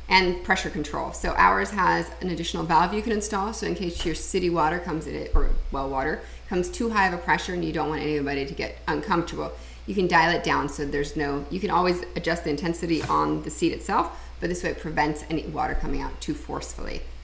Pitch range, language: 145-200 Hz, English